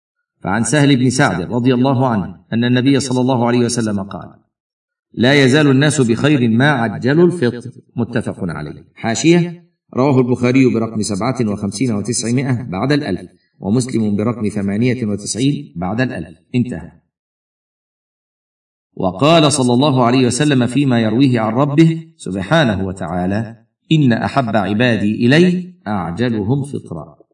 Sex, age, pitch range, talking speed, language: male, 50-69, 110-140 Hz, 125 wpm, Arabic